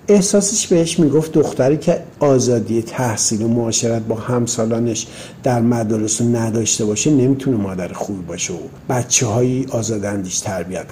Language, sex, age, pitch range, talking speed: Persian, male, 50-69, 105-140 Hz, 130 wpm